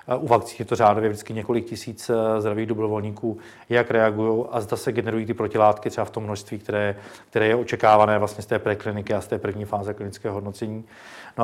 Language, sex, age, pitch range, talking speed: Czech, male, 40-59, 105-120 Hz, 200 wpm